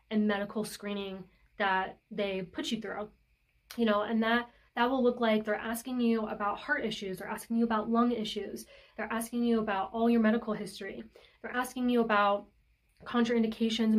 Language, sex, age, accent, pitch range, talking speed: English, female, 20-39, American, 205-235 Hz, 175 wpm